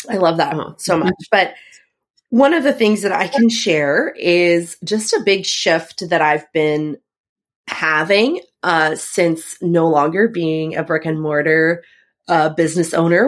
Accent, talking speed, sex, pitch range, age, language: American, 160 wpm, female, 165-225 Hz, 30-49, English